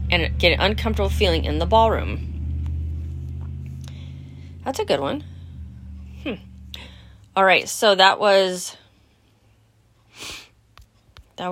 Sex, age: female, 30-49